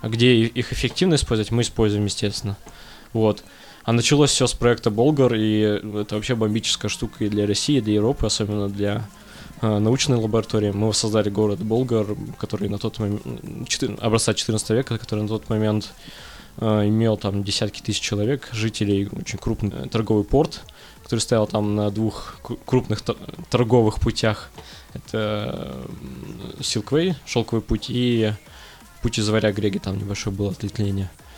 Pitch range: 105-120 Hz